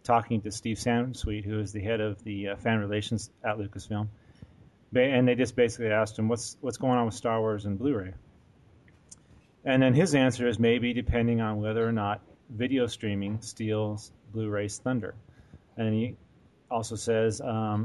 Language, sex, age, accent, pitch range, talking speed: English, male, 30-49, American, 105-125 Hz, 170 wpm